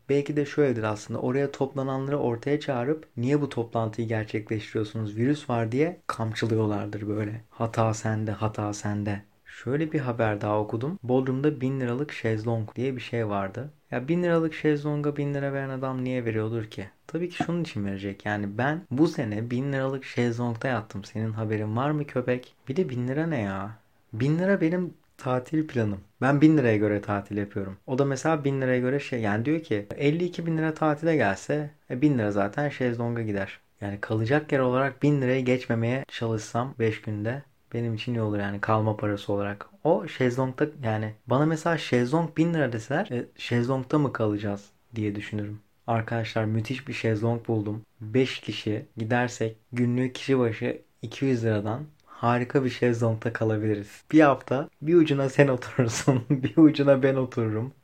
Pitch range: 110-140 Hz